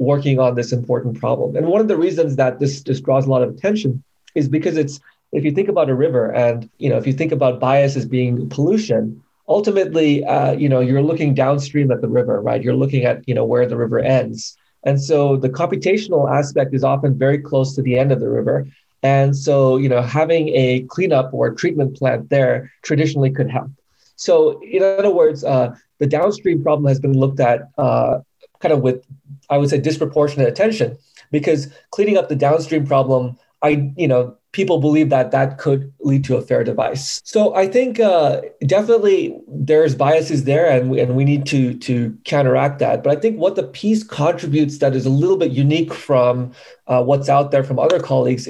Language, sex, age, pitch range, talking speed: English, male, 30-49, 130-155 Hz, 205 wpm